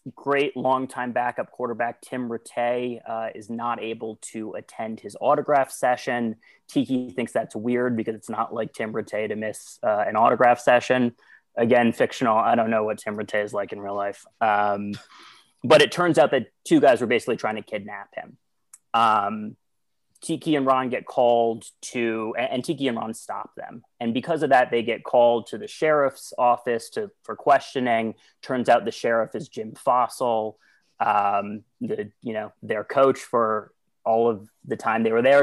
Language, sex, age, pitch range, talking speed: English, male, 30-49, 110-130 Hz, 180 wpm